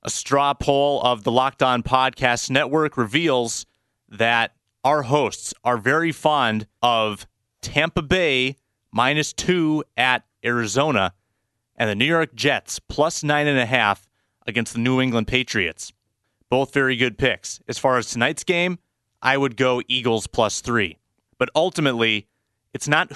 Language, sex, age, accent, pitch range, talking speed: English, male, 30-49, American, 110-140 Hz, 150 wpm